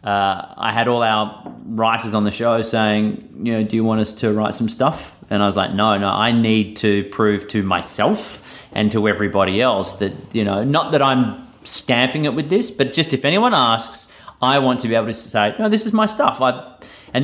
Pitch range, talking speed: 105-130 Hz, 225 wpm